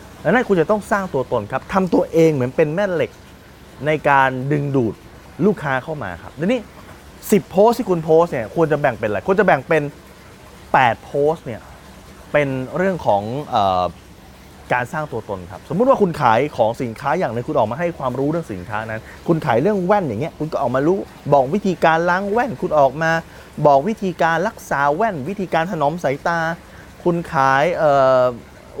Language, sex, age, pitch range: Thai, male, 20-39, 135-180 Hz